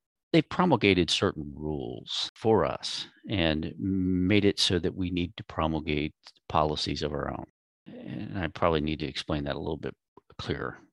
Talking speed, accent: 165 wpm, American